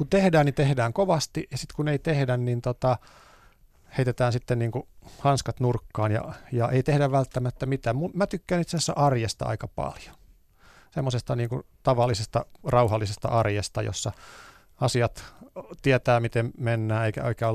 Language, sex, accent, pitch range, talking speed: Finnish, male, native, 115-140 Hz, 145 wpm